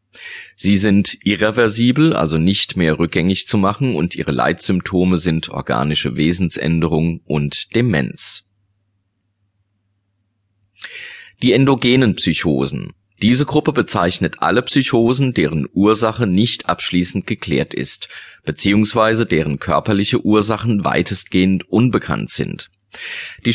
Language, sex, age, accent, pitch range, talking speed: German, male, 30-49, German, 85-110 Hz, 100 wpm